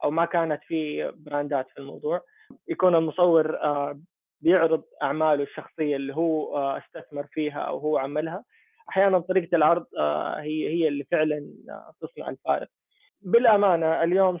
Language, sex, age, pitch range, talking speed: Arabic, male, 20-39, 150-180 Hz, 125 wpm